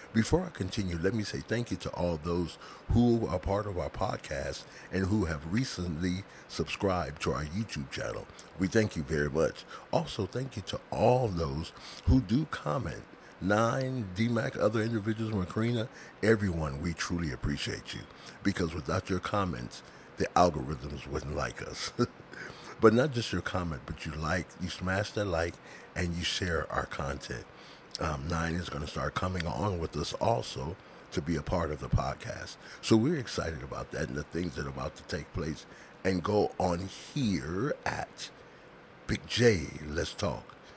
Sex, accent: male, American